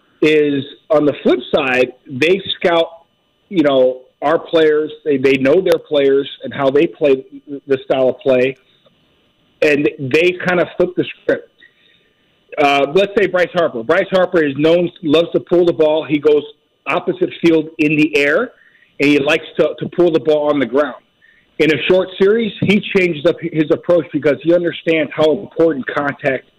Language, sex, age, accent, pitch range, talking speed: English, male, 40-59, American, 150-180 Hz, 175 wpm